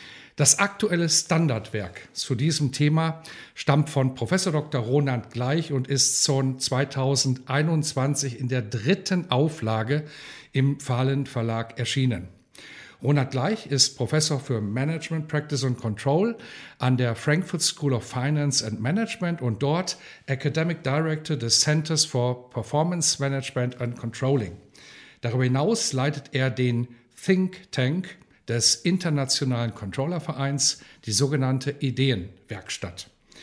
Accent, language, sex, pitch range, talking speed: German, German, male, 125-160 Hz, 115 wpm